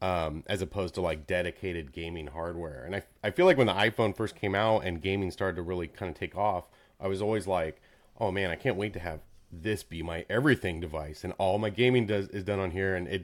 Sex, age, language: male, 30-49, English